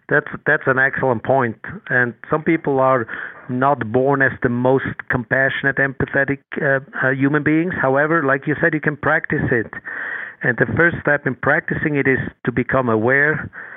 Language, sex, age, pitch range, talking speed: English, male, 50-69, 120-145 Hz, 170 wpm